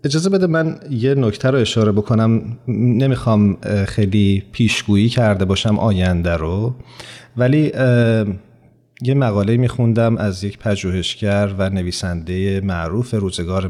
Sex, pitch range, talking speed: male, 100-120 Hz, 115 wpm